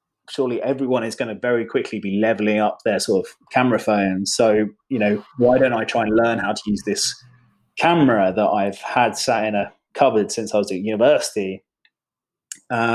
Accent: British